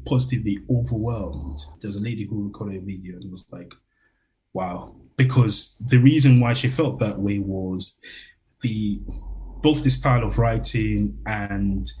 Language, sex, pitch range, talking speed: English, male, 100-120 Hz, 145 wpm